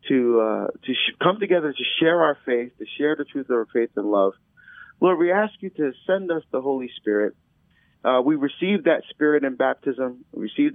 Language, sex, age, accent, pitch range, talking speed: English, male, 40-59, American, 135-185 Hz, 205 wpm